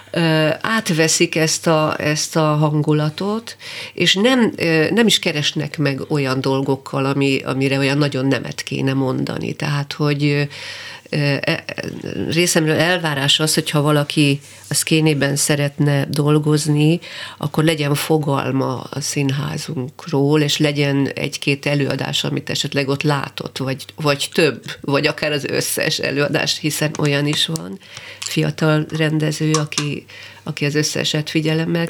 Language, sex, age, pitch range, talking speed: Hungarian, female, 40-59, 140-160 Hz, 120 wpm